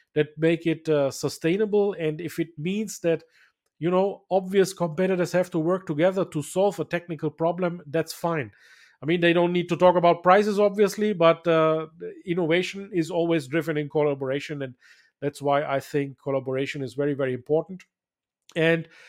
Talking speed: 170 wpm